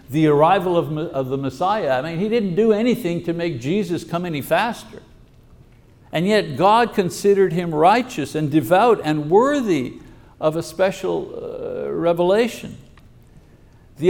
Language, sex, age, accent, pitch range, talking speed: English, male, 60-79, American, 150-205 Hz, 145 wpm